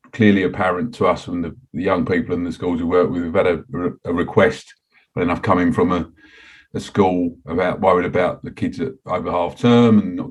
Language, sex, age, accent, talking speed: English, male, 40-59, British, 225 wpm